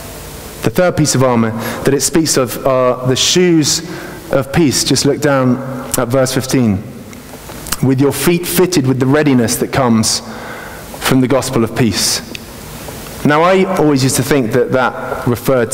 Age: 30-49